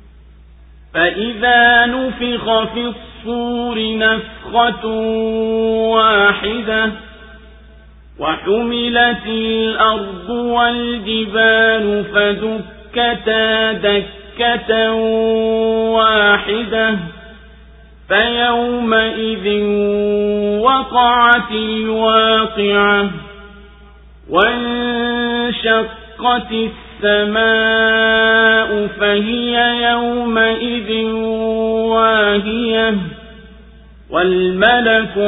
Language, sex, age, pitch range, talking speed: Swahili, male, 50-69, 205-235 Hz, 35 wpm